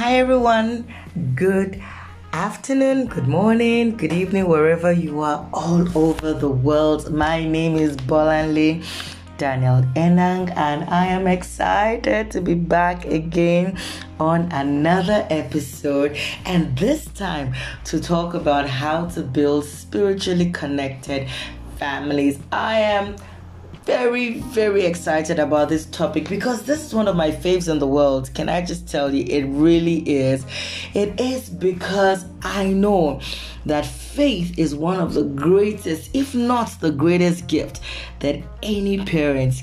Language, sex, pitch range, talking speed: English, female, 140-185 Hz, 140 wpm